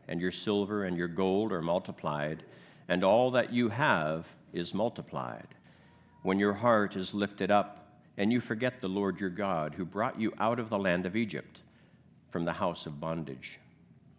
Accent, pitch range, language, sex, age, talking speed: American, 90-115 Hz, English, male, 60-79, 180 wpm